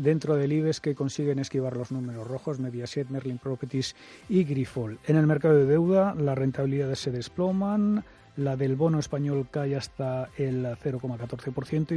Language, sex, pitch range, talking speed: Spanish, male, 130-155 Hz, 155 wpm